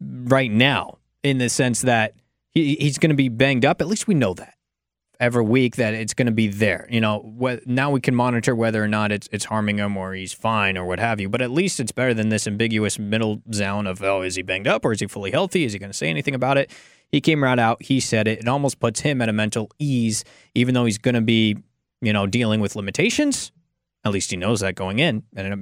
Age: 20-39